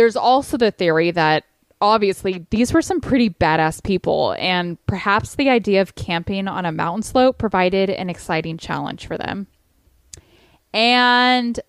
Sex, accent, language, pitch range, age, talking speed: female, American, English, 170-220 Hz, 10-29, 150 wpm